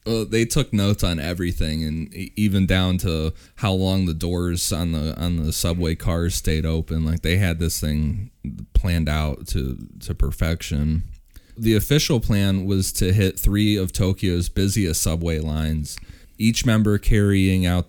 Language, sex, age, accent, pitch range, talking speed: English, male, 30-49, American, 85-100 Hz, 160 wpm